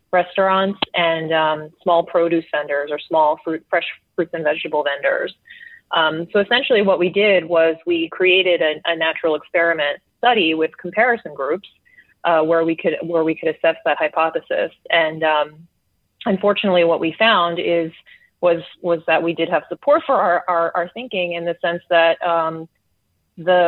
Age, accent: 30-49, American